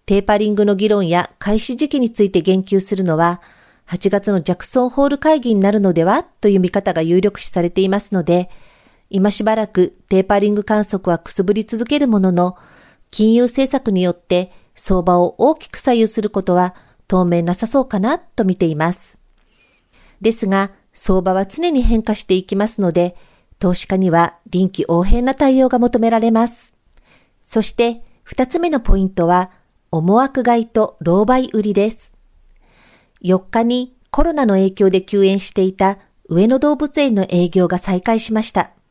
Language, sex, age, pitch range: Japanese, female, 50-69, 180-240 Hz